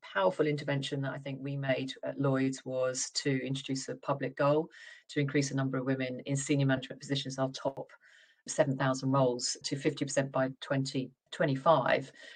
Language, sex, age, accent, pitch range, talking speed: English, female, 40-59, British, 135-160 Hz, 155 wpm